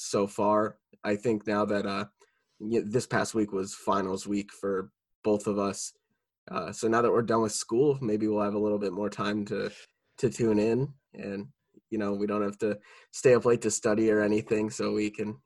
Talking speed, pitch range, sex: 215 wpm, 105-120 Hz, male